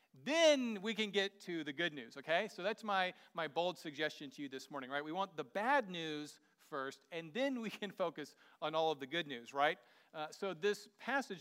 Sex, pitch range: male, 150-195 Hz